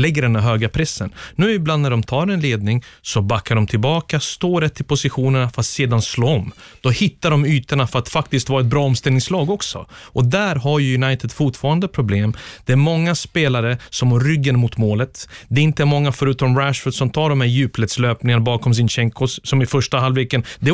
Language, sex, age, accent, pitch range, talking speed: Swedish, male, 30-49, native, 120-150 Hz, 210 wpm